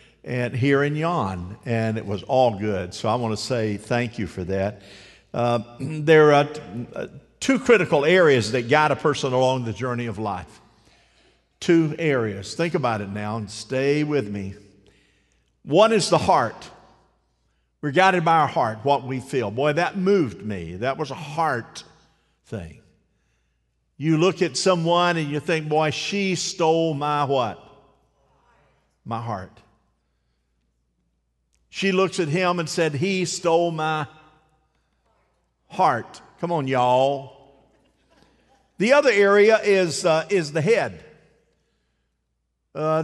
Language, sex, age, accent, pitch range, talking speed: English, male, 50-69, American, 115-175 Hz, 140 wpm